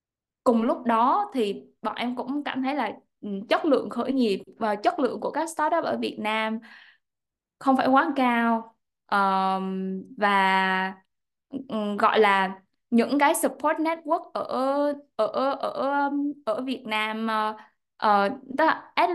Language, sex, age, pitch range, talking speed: Vietnamese, female, 10-29, 215-270 Hz, 130 wpm